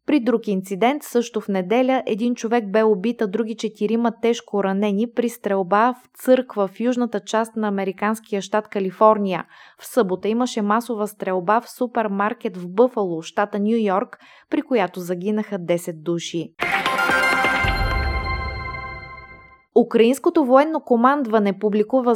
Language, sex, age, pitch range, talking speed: Bulgarian, female, 20-39, 195-240 Hz, 125 wpm